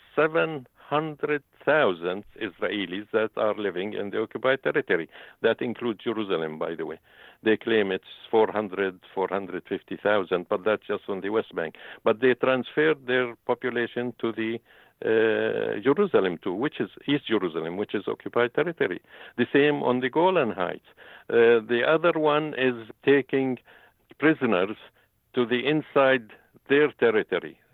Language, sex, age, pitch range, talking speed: English, male, 50-69, 110-130 Hz, 135 wpm